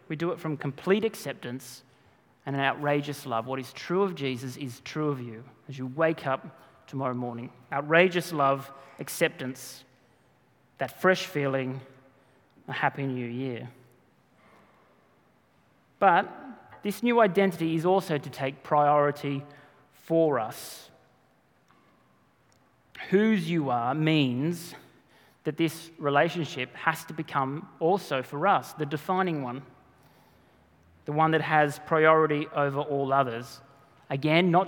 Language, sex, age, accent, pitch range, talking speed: English, male, 30-49, Australian, 130-165 Hz, 125 wpm